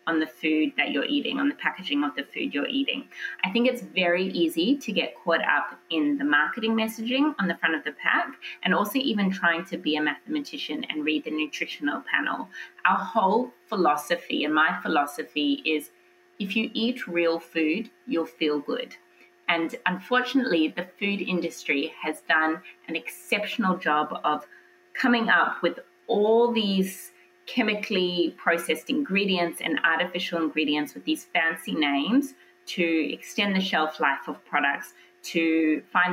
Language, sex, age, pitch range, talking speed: English, female, 20-39, 155-240 Hz, 160 wpm